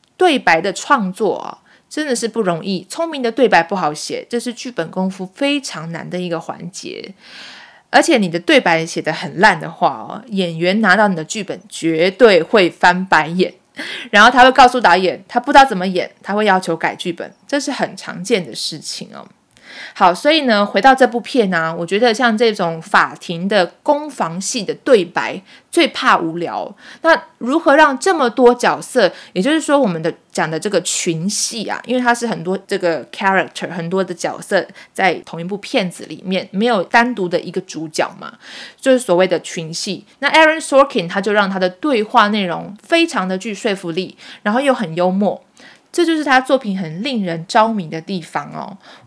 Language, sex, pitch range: Chinese, female, 175-250 Hz